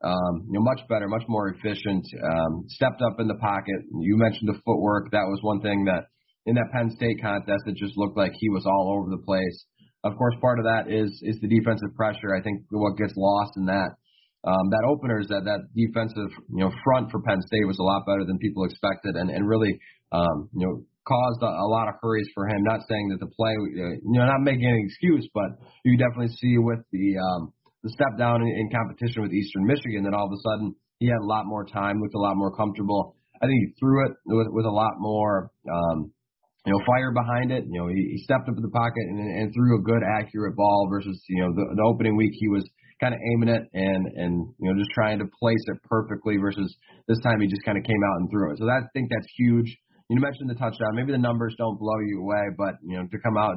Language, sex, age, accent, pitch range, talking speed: English, male, 30-49, American, 100-115 Hz, 250 wpm